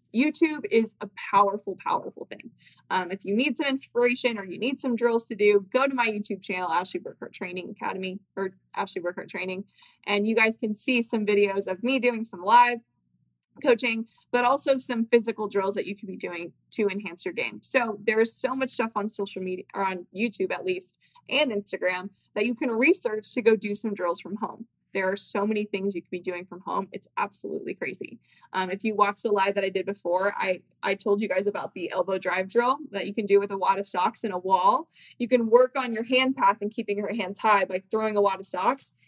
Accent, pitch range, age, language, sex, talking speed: American, 195-240 Hz, 20-39, English, female, 230 wpm